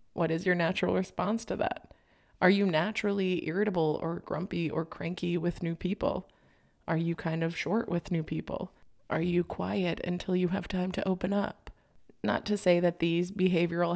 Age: 20-39